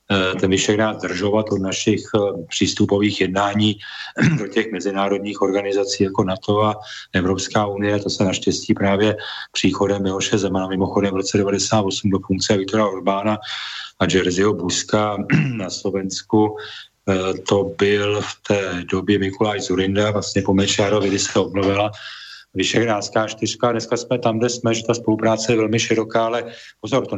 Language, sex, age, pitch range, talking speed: Czech, male, 40-59, 95-105 Hz, 140 wpm